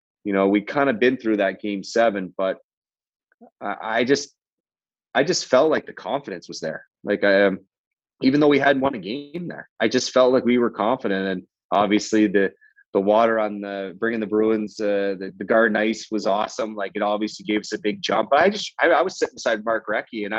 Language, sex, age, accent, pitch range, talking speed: English, male, 30-49, American, 105-130 Hz, 220 wpm